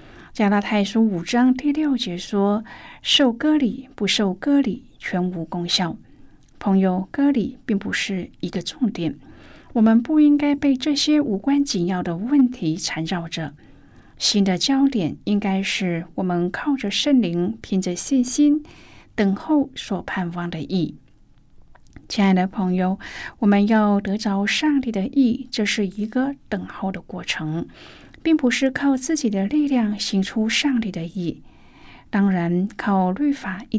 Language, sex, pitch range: Chinese, female, 185-255 Hz